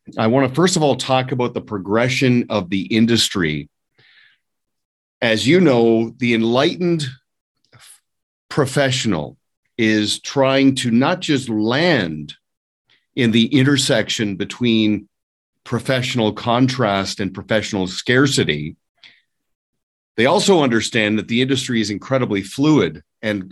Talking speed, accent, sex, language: 110 wpm, American, male, English